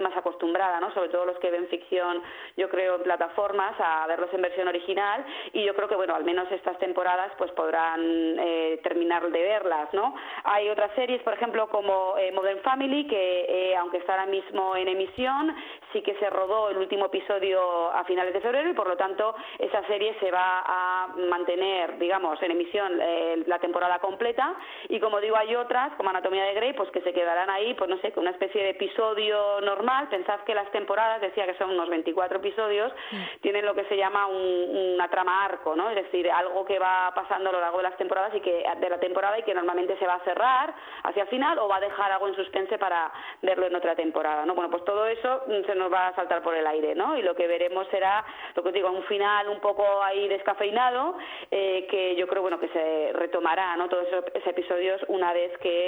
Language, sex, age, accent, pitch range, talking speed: Spanish, female, 20-39, Spanish, 180-205 Hz, 215 wpm